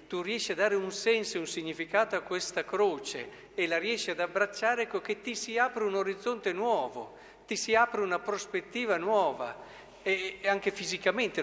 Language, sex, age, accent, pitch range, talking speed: Italian, male, 50-69, native, 160-210 Hz, 180 wpm